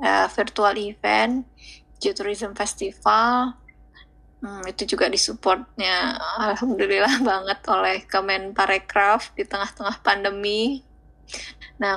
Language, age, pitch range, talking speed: Indonesian, 20-39, 205-230 Hz, 85 wpm